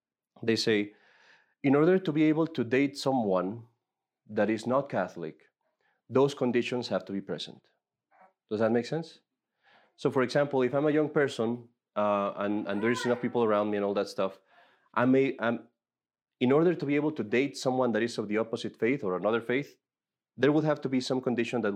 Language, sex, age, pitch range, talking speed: English, male, 30-49, 105-135 Hz, 200 wpm